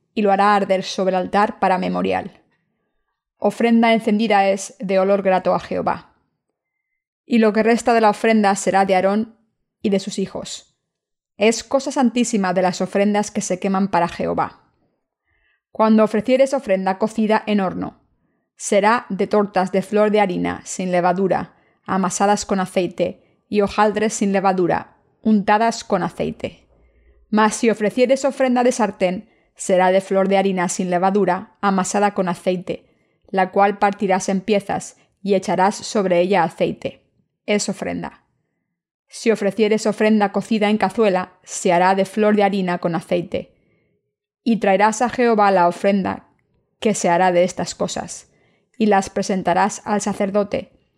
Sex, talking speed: female, 150 wpm